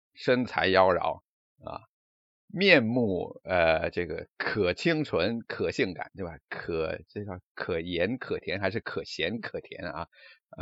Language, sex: Chinese, male